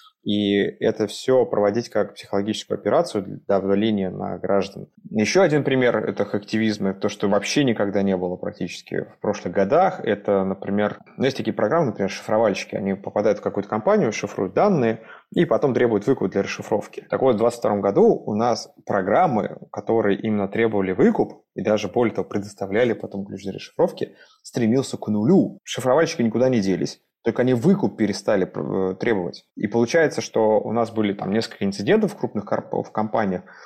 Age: 20-39